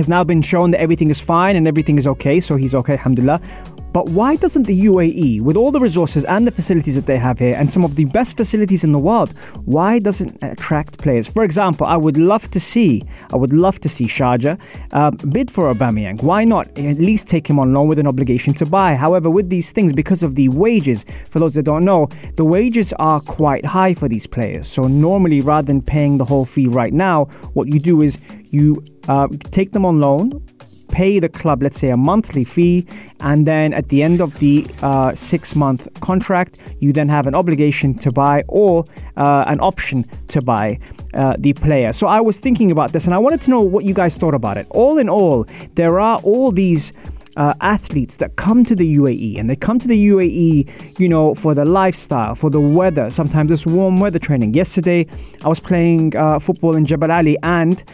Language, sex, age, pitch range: English, male, 20-39, 140-185 Hz